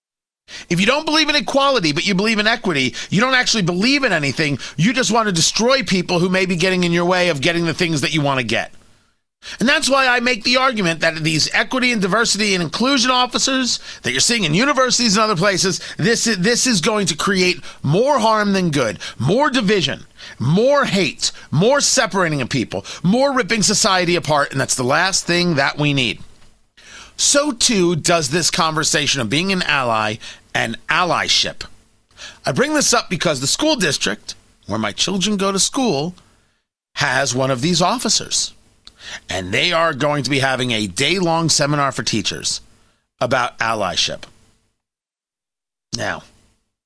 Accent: American